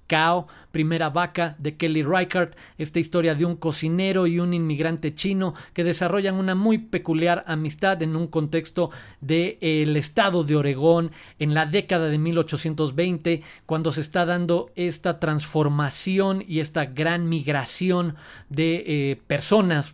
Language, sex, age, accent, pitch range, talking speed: Spanish, male, 40-59, Mexican, 150-180 Hz, 145 wpm